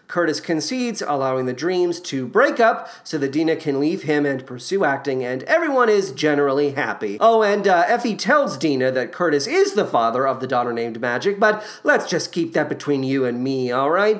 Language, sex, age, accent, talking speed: English, male, 40-59, American, 205 wpm